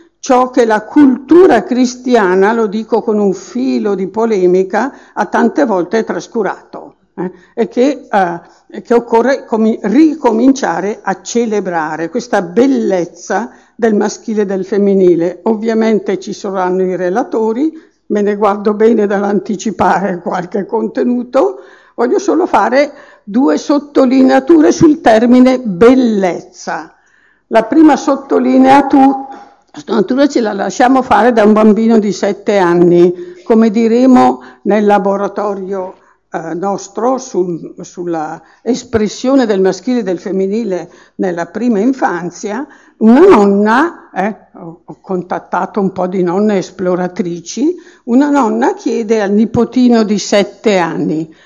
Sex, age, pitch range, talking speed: female, 60-79, 190-255 Hz, 120 wpm